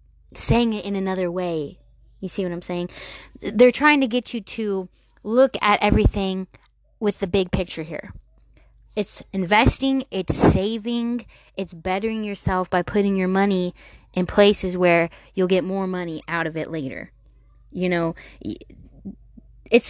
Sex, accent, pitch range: female, American, 170-210 Hz